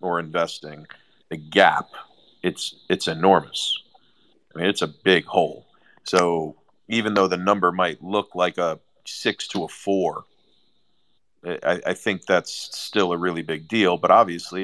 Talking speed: 150 wpm